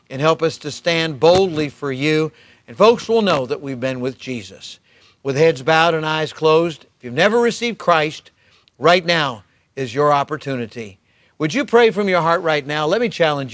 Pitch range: 130-165 Hz